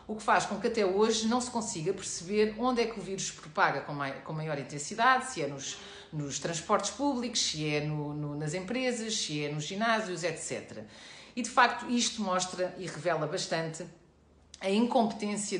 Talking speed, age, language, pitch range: 175 wpm, 40-59, Portuguese, 165-225 Hz